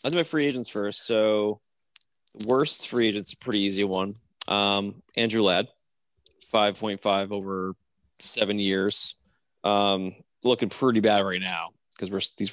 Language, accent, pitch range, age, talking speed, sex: English, American, 100-120 Hz, 20-39, 135 wpm, male